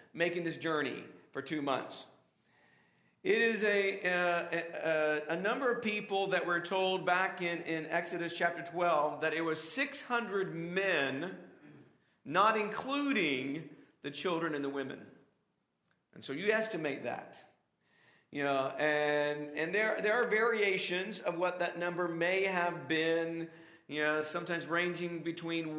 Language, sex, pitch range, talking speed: English, male, 155-195 Hz, 140 wpm